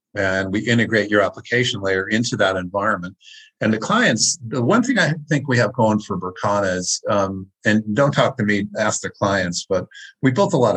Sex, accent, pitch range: male, American, 95-115 Hz